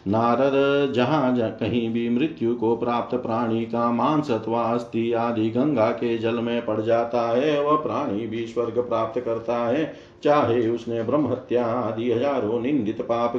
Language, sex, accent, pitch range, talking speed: Hindi, male, native, 115-145 Hz, 150 wpm